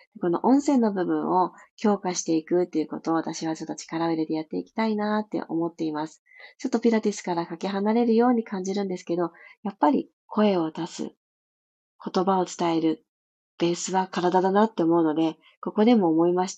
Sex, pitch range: female, 170-225 Hz